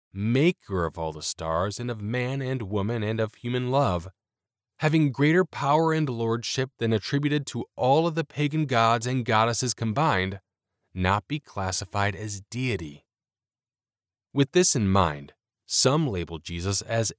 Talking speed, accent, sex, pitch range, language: 150 wpm, American, male, 95-130 Hz, English